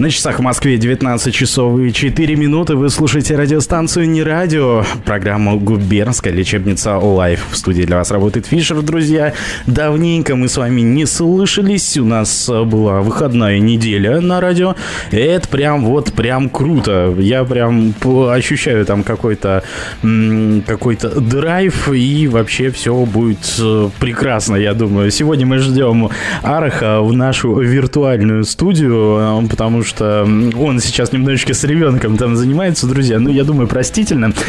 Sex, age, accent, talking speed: male, 20-39, native, 135 wpm